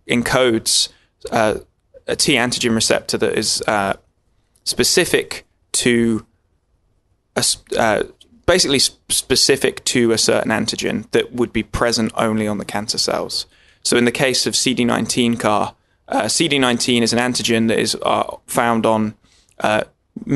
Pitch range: 110-125 Hz